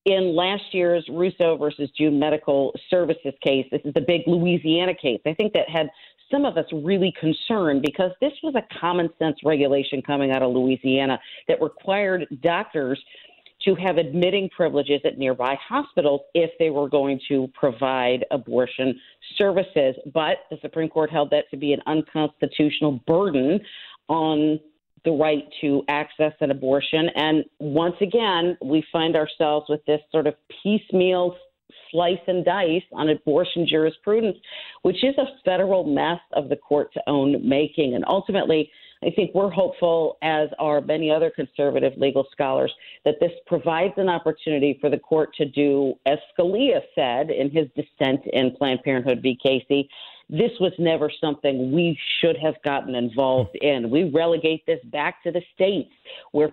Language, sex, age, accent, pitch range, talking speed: English, female, 40-59, American, 140-175 Hz, 160 wpm